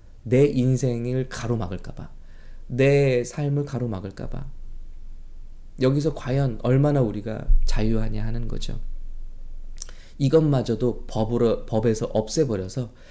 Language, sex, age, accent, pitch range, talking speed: English, male, 20-39, Korean, 100-140 Hz, 80 wpm